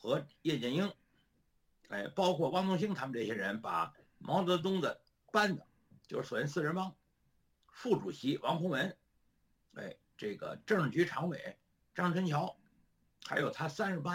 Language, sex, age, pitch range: Chinese, male, 60-79, 150-200 Hz